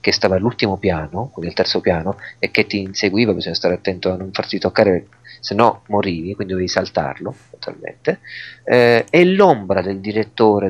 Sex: male